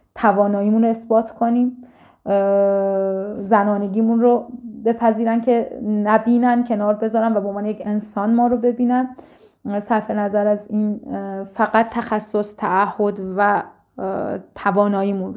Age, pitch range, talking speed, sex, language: 30-49, 200-235 Hz, 110 wpm, female, Persian